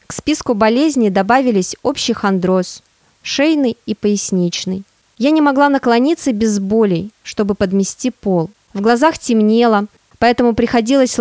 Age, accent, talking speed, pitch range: 20-39, native, 130 wpm, 200-265 Hz